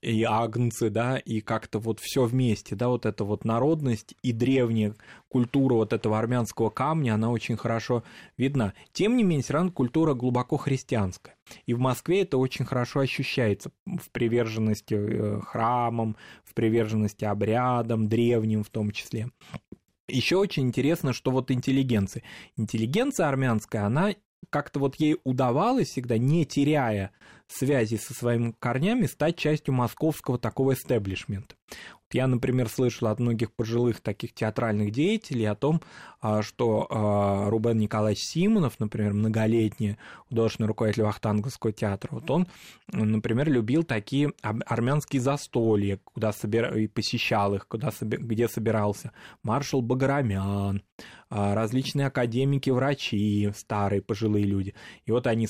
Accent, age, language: native, 20-39, Russian